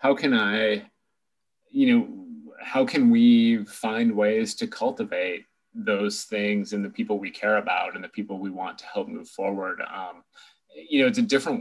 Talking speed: 180 wpm